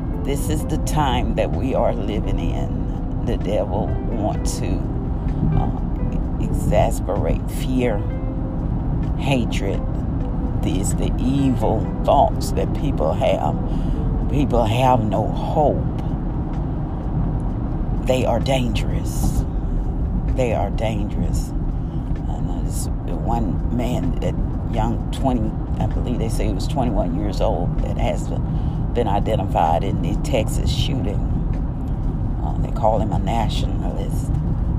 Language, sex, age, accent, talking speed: English, female, 50-69, American, 110 wpm